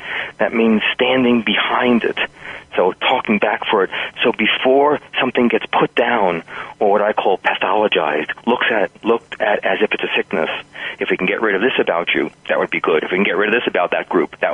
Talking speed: 225 wpm